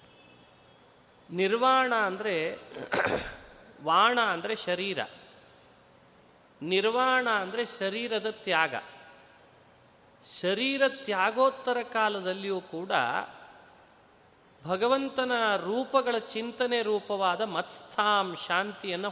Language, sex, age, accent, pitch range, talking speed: Kannada, male, 30-49, native, 175-240 Hz, 60 wpm